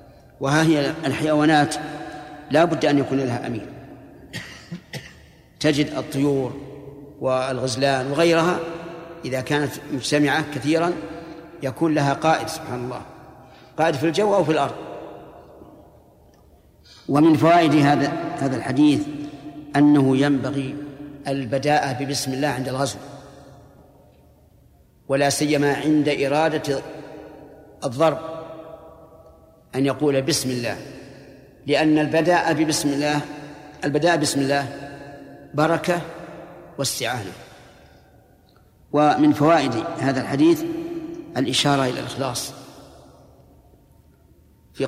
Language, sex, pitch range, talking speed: Arabic, male, 135-155 Hz, 90 wpm